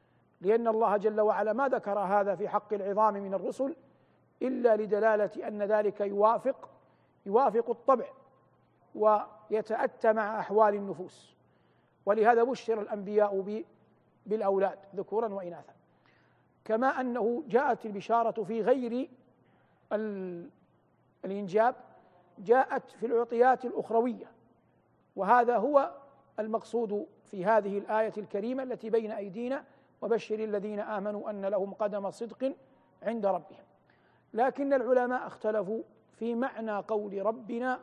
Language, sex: Arabic, male